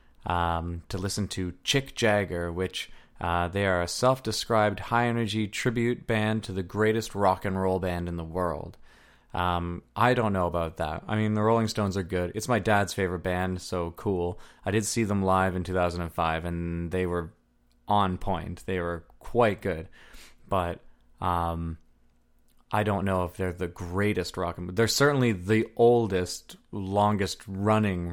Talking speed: 170 wpm